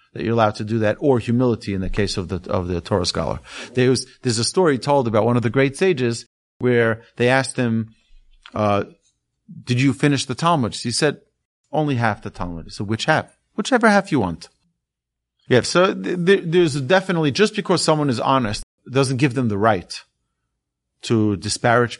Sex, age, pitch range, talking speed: male, 30-49, 115-160 Hz, 190 wpm